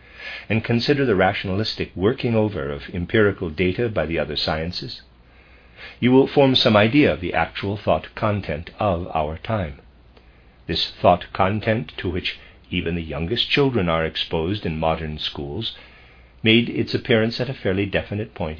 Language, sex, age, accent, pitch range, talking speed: English, male, 50-69, American, 75-110 Hz, 155 wpm